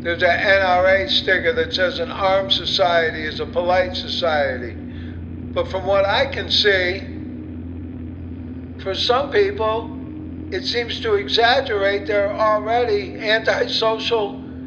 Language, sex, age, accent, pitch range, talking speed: English, male, 60-79, American, 160-230 Hz, 120 wpm